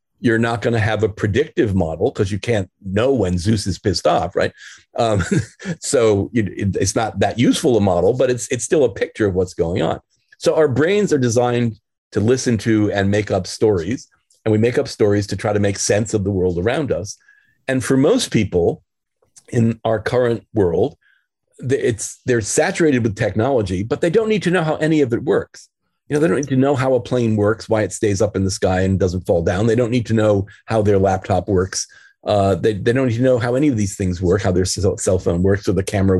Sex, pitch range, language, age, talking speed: male, 100-130 Hz, English, 40-59, 230 wpm